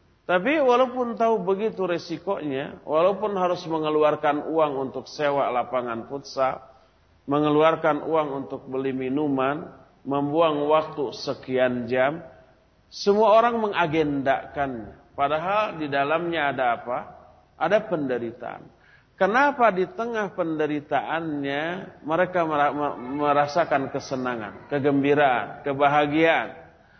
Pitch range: 140-185 Hz